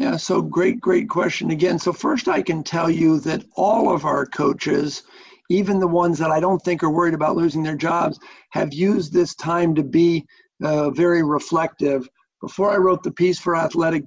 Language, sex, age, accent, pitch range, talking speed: English, male, 50-69, American, 150-170 Hz, 195 wpm